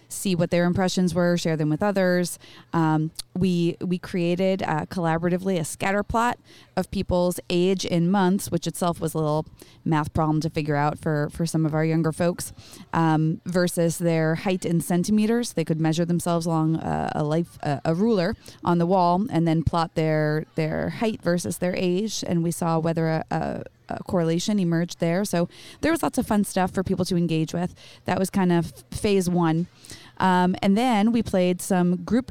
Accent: American